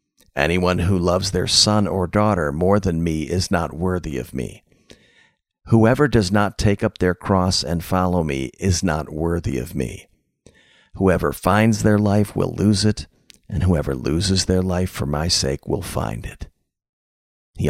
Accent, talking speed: American, 165 wpm